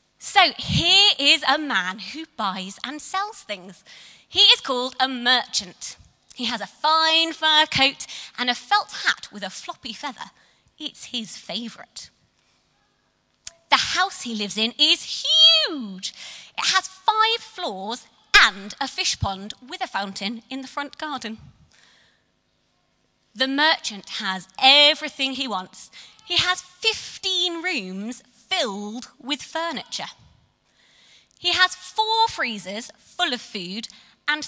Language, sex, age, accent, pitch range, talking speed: English, female, 30-49, British, 220-350 Hz, 130 wpm